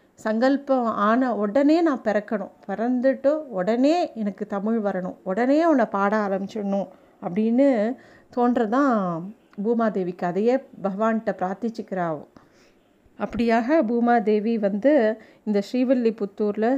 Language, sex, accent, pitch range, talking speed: Tamil, female, native, 200-245 Hz, 95 wpm